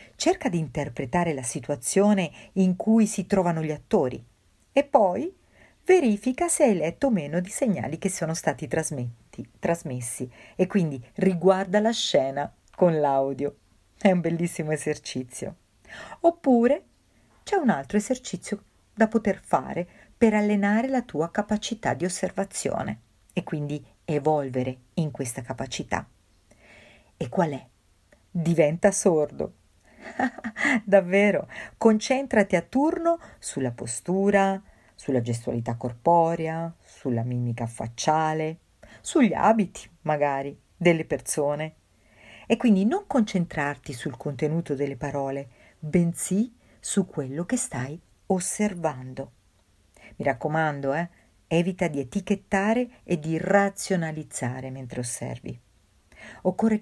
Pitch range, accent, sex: 140-205 Hz, native, female